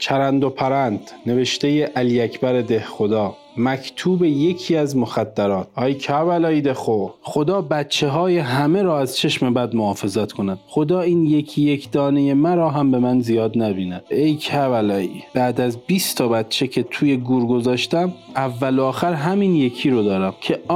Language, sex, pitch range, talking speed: Persian, male, 125-165 Hz, 155 wpm